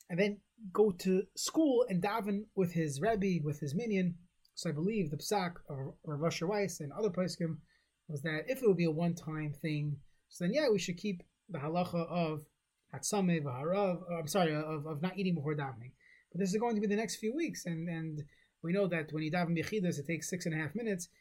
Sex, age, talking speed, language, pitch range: male, 30-49, 220 wpm, English, 155-200 Hz